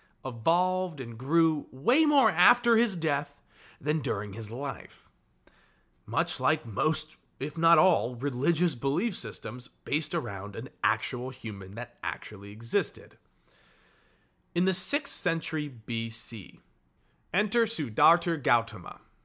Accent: American